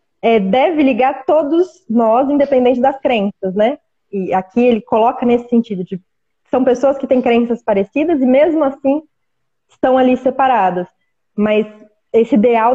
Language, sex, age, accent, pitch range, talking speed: Portuguese, female, 20-39, Brazilian, 210-255 Hz, 145 wpm